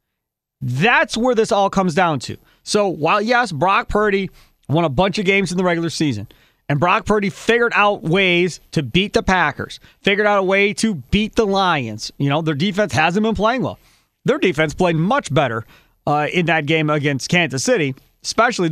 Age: 30-49